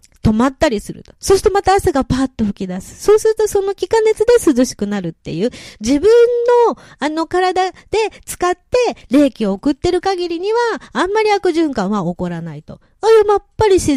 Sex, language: female, Japanese